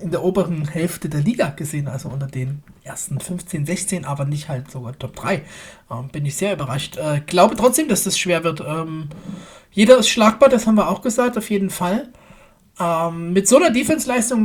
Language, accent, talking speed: German, German, 200 wpm